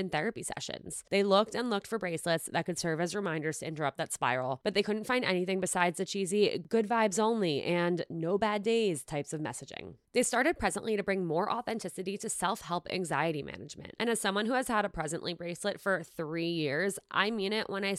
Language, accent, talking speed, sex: English, American, 210 wpm, female